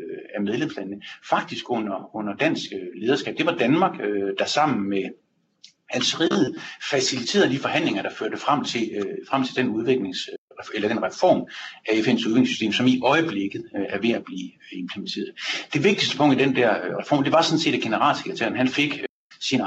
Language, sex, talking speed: Danish, male, 185 wpm